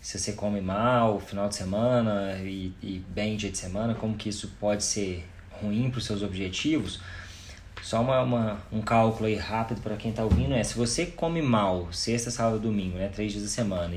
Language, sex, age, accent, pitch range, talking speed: Portuguese, male, 20-39, Brazilian, 100-120 Hz, 205 wpm